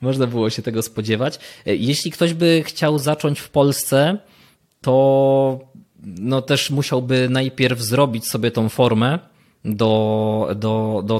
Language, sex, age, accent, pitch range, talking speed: Polish, male, 20-39, native, 110-140 Hz, 130 wpm